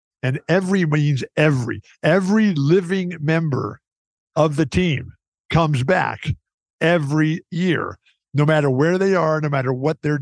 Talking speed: 135 wpm